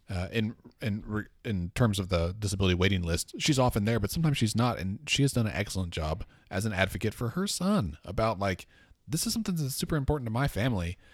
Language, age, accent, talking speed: English, 30-49, American, 225 wpm